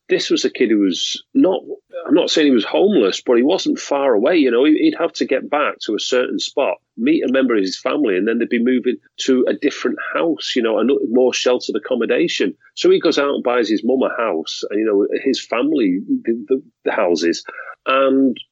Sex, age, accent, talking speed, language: male, 40-59, British, 220 wpm, English